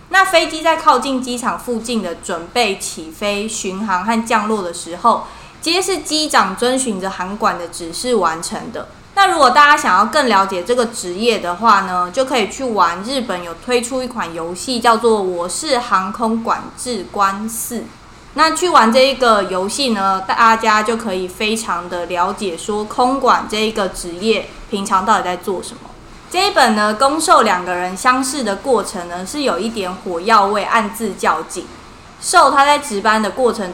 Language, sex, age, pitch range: Chinese, female, 20-39, 190-250 Hz